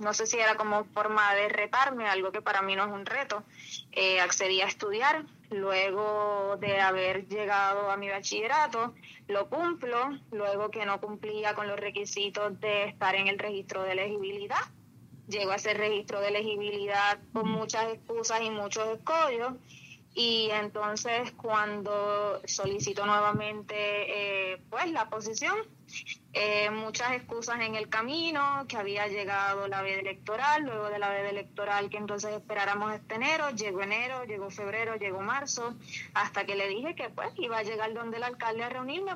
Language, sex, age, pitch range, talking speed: Spanish, female, 20-39, 200-235 Hz, 160 wpm